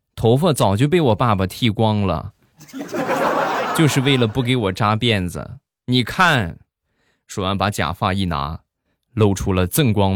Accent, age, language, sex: native, 20-39, Chinese, male